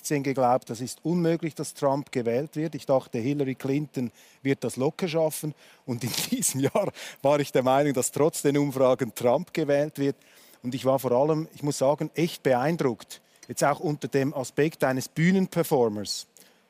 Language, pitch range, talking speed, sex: German, 135-170 Hz, 175 wpm, male